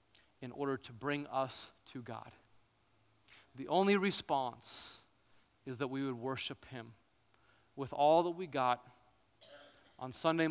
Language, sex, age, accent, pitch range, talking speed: English, male, 30-49, American, 115-150 Hz, 130 wpm